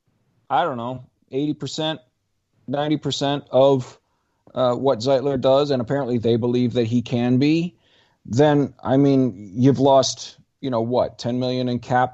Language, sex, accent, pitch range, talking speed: English, male, American, 105-135 Hz, 160 wpm